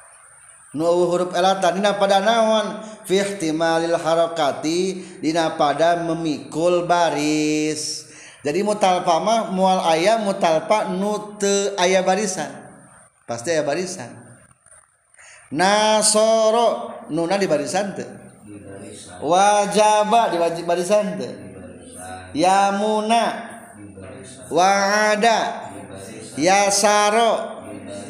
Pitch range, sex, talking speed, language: 140-200 Hz, male, 75 wpm, Indonesian